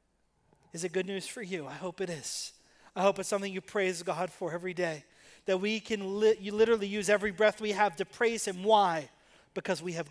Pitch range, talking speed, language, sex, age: 175-220 Hz, 225 wpm, English, male, 30-49